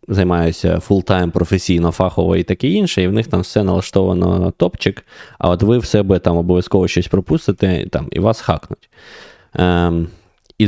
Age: 20-39